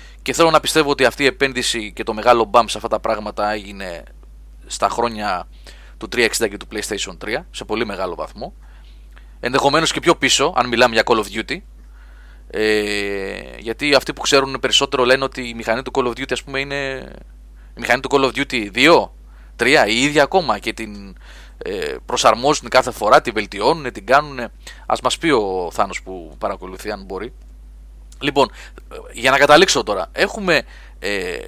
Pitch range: 105-145 Hz